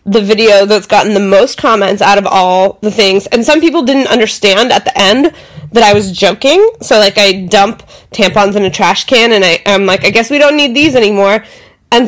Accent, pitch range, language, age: American, 200-245 Hz, English, 20-39